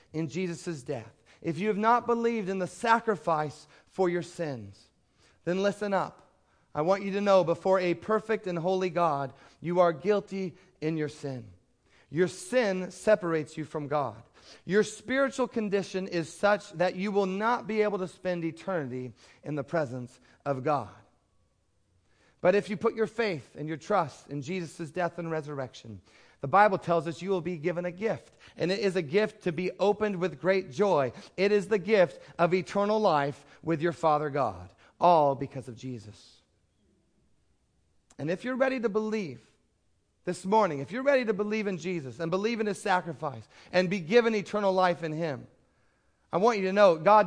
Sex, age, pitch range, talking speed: male, 40-59, 145-200 Hz, 180 wpm